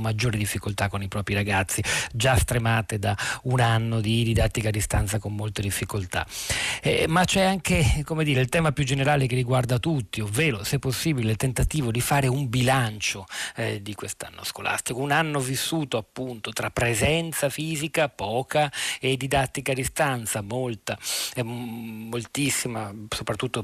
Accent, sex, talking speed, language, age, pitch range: native, male, 150 wpm, Italian, 40-59, 110-135 Hz